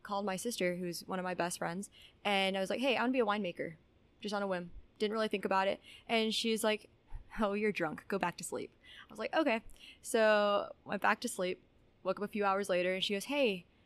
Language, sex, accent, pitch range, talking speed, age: Spanish, female, American, 170-205 Hz, 250 wpm, 20-39